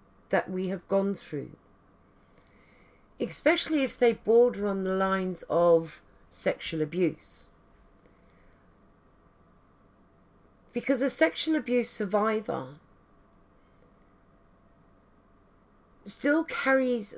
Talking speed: 75 wpm